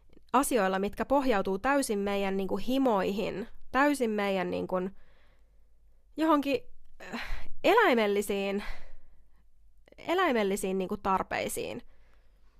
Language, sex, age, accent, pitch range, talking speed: Finnish, female, 20-39, native, 200-275 Hz, 90 wpm